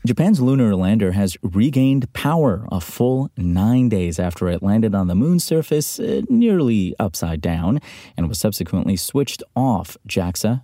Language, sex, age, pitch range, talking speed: English, male, 30-49, 90-125 Hz, 145 wpm